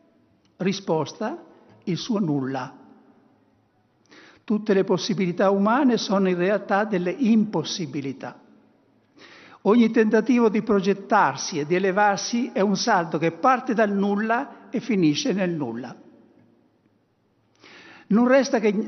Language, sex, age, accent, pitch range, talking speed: Italian, male, 60-79, native, 155-220 Hz, 110 wpm